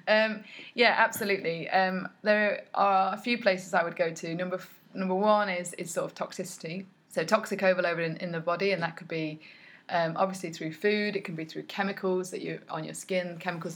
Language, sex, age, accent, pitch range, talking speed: English, female, 20-39, British, 165-190 Hz, 210 wpm